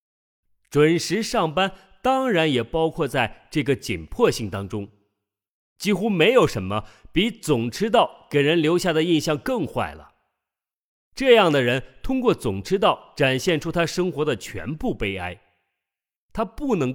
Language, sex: Chinese, male